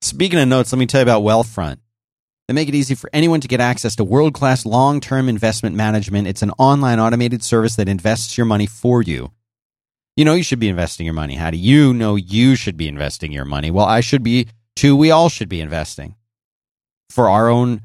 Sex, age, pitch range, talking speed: male, 30-49, 90-125 Hz, 220 wpm